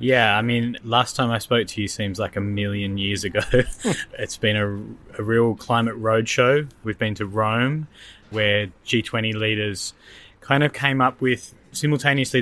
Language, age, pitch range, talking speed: English, 20-39, 100-115 Hz, 170 wpm